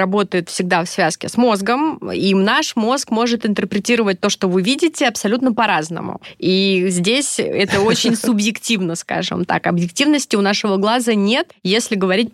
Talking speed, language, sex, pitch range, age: 150 wpm, Russian, female, 195-245 Hz, 20-39